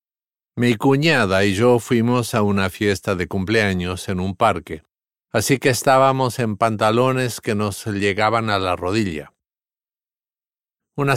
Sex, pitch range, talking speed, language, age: male, 105-140 Hz, 135 wpm, English, 50-69